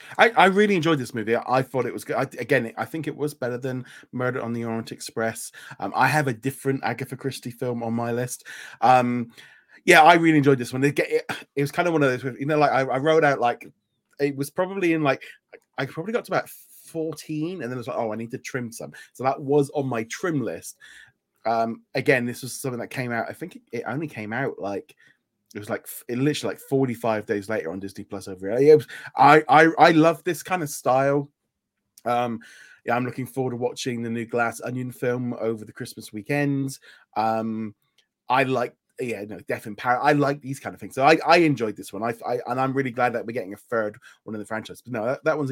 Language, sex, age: English, male, 20-39